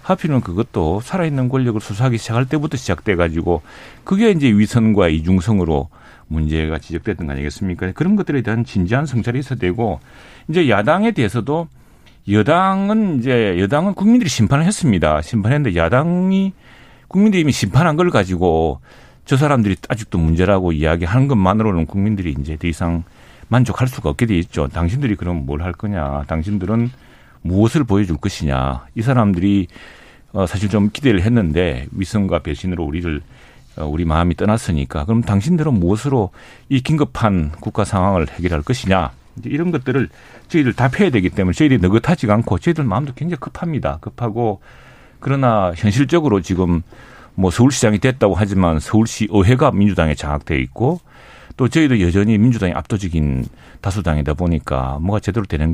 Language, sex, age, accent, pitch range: Korean, male, 40-59, native, 85-130 Hz